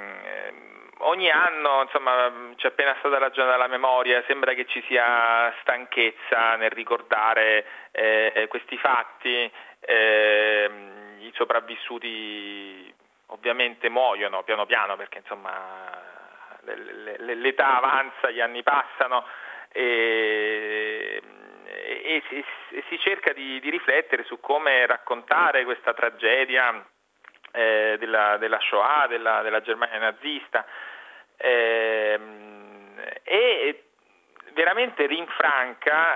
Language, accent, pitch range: Italian, native, 110-150 Hz